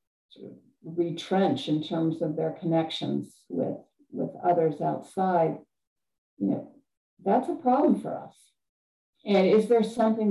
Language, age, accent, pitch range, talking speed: English, 50-69, American, 165-215 Hz, 135 wpm